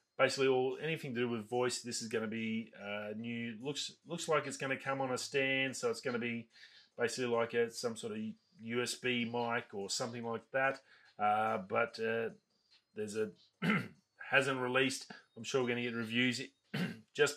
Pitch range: 115-135 Hz